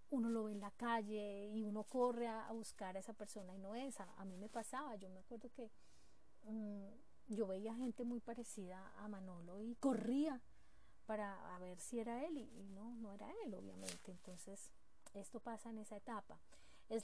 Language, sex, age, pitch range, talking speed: Spanish, female, 30-49, 195-230 Hz, 195 wpm